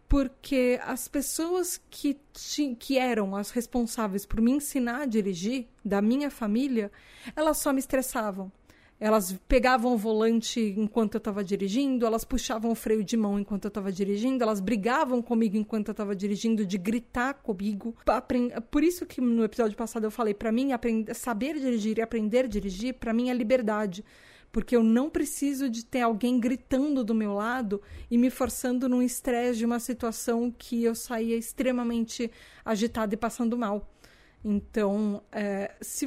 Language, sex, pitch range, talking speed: Portuguese, female, 215-250 Hz, 165 wpm